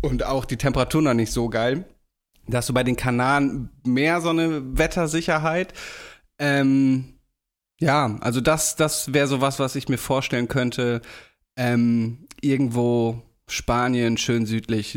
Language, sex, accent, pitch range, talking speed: German, male, German, 120-150 Hz, 145 wpm